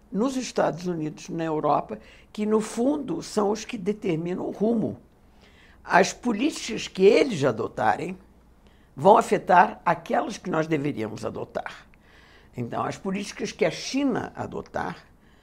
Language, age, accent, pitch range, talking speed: Portuguese, 60-79, Brazilian, 150-210 Hz, 130 wpm